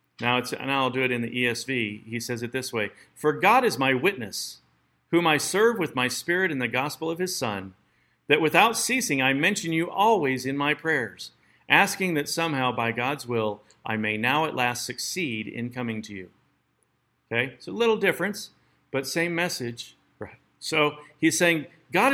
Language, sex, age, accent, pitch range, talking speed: English, male, 50-69, American, 120-160 Hz, 185 wpm